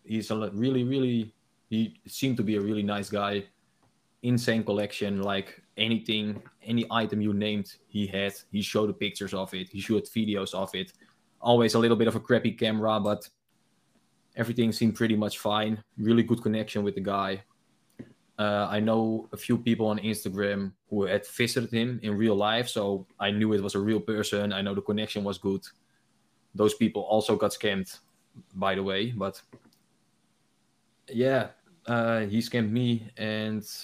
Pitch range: 100-110 Hz